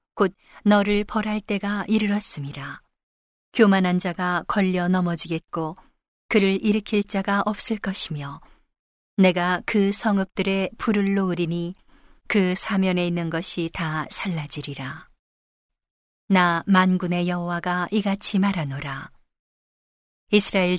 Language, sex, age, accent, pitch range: Korean, female, 40-59, native, 170-205 Hz